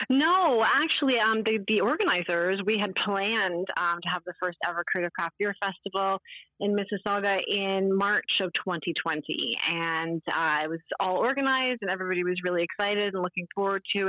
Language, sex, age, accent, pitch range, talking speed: English, female, 30-49, American, 170-215 Hz, 170 wpm